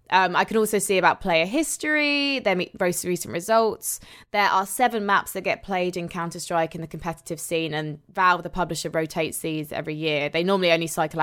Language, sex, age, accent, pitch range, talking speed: English, female, 20-39, British, 160-190 Hz, 205 wpm